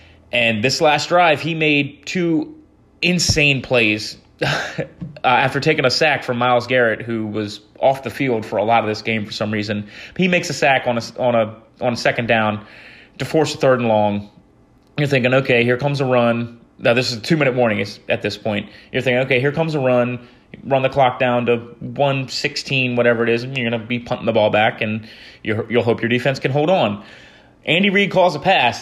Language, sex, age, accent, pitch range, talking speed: English, male, 30-49, American, 115-145 Hz, 215 wpm